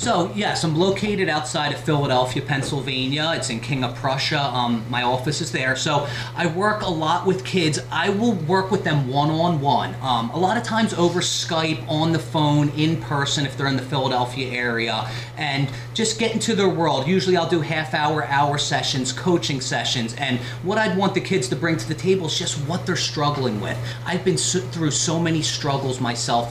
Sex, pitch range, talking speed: male, 125-165 Hz, 195 wpm